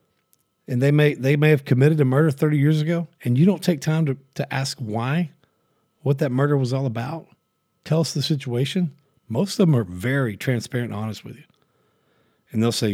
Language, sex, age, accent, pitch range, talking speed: English, male, 40-59, American, 115-145 Hz, 205 wpm